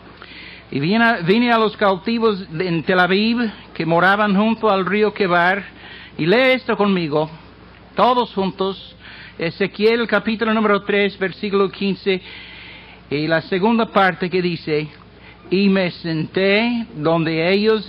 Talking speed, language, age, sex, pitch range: 130 wpm, Spanish, 60-79, male, 160-205 Hz